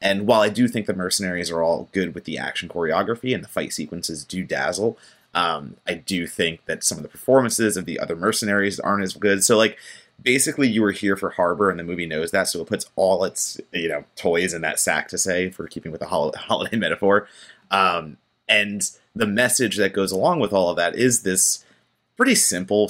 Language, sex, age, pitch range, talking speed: English, male, 30-49, 85-105 Hz, 220 wpm